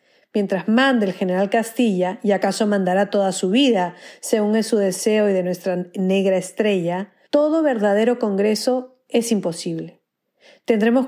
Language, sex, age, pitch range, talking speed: Spanish, female, 40-59, 190-240 Hz, 140 wpm